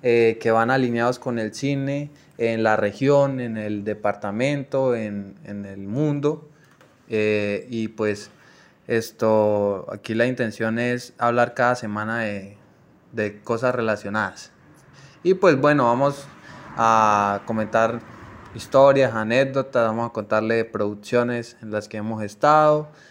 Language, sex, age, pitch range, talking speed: Spanish, male, 20-39, 110-135 Hz, 130 wpm